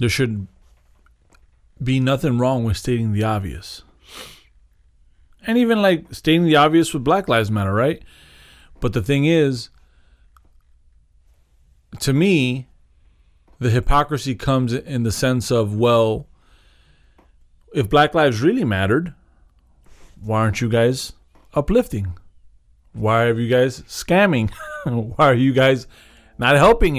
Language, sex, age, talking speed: English, male, 30-49, 120 wpm